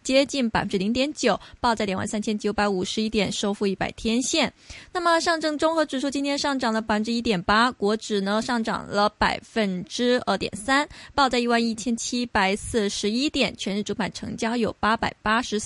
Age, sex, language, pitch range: 20-39, female, Chinese, 215-265 Hz